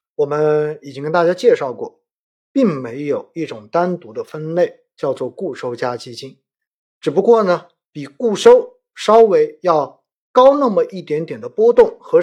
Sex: male